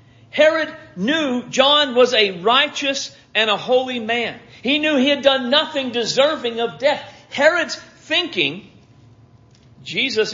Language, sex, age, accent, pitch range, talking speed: English, male, 50-69, American, 145-245 Hz, 130 wpm